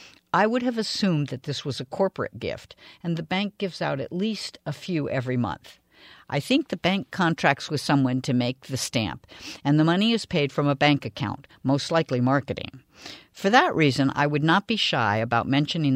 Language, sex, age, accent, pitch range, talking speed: English, female, 50-69, American, 130-200 Hz, 205 wpm